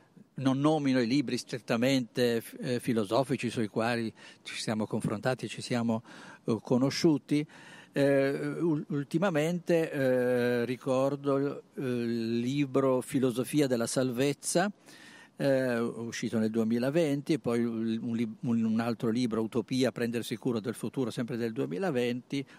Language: Italian